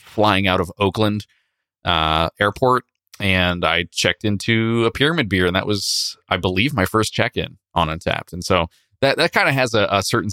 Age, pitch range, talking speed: 20-39, 90-110 Hz, 190 wpm